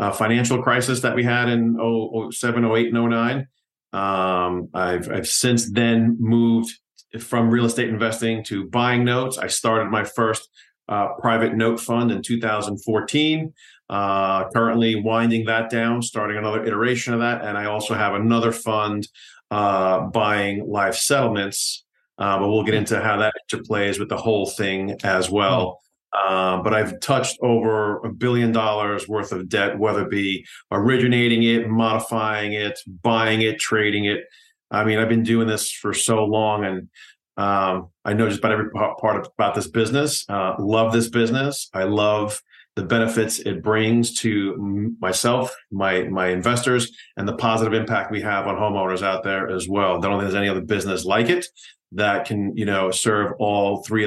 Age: 40-59